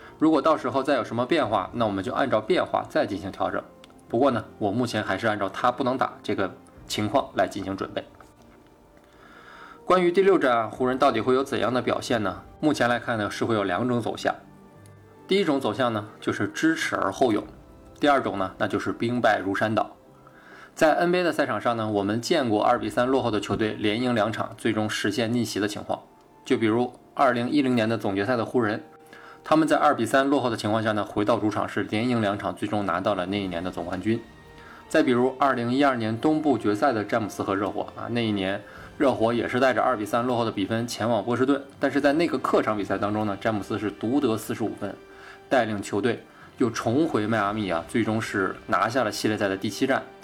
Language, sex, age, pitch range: Chinese, male, 20-39, 105-130 Hz